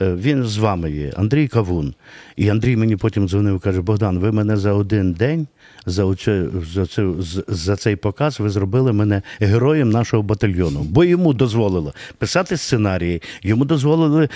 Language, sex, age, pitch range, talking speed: Ukrainian, male, 50-69, 100-135 Hz, 155 wpm